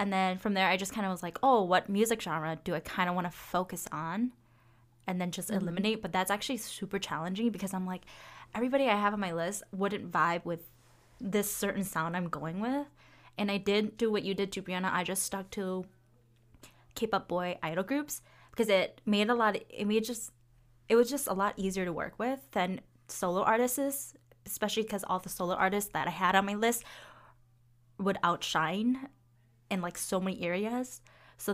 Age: 10-29